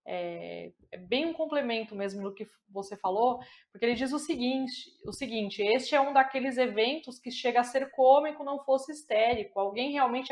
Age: 20-39